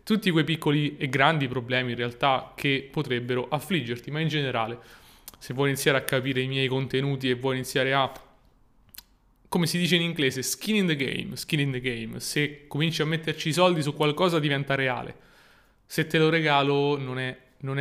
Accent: native